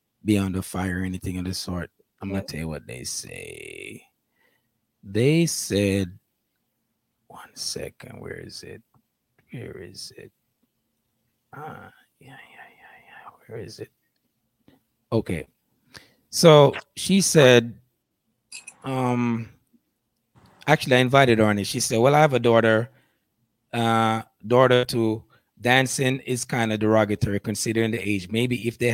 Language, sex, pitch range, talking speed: English, male, 105-125 Hz, 135 wpm